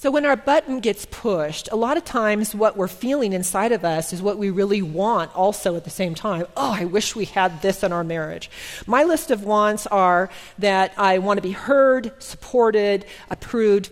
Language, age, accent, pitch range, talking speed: English, 40-59, American, 190-260 Hz, 205 wpm